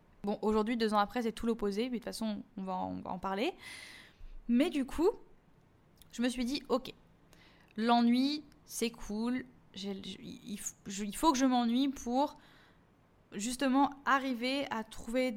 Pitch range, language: 205-250 Hz, French